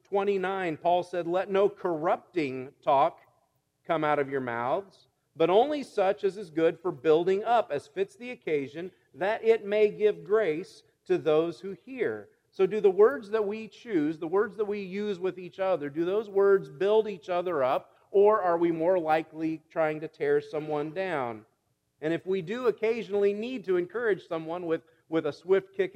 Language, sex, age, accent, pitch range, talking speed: English, male, 40-59, American, 145-205 Hz, 185 wpm